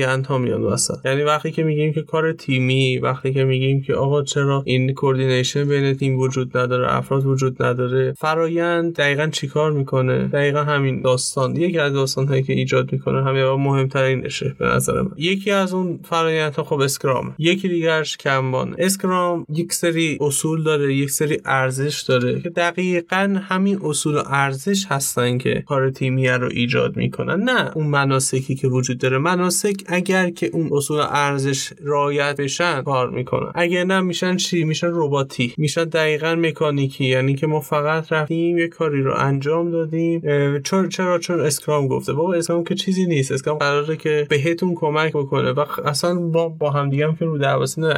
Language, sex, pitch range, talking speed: Persian, male, 135-170 Hz, 175 wpm